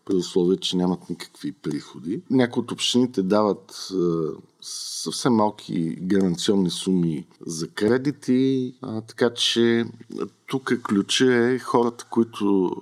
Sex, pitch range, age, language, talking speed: male, 95-115 Hz, 50-69, Bulgarian, 110 wpm